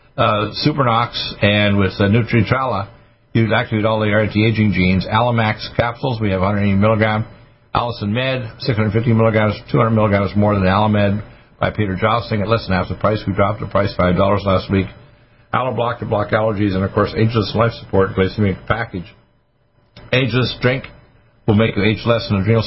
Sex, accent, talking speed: male, American, 175 wpm